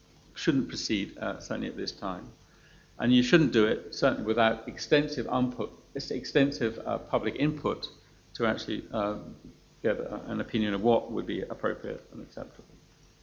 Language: English